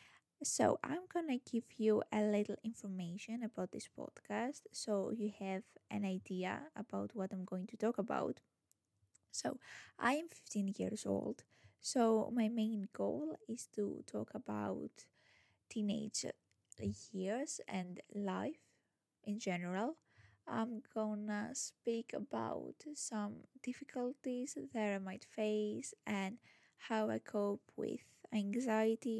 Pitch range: 195-240 Hz